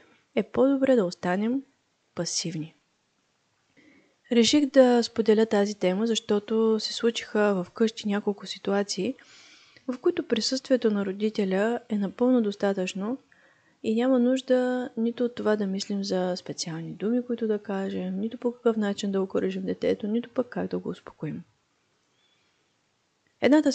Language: Bulgarian